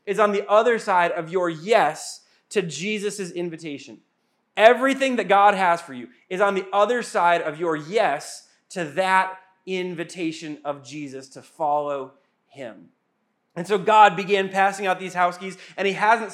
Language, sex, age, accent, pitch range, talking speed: English, male, 20-39, American, 170-215 Hz, 165 wpm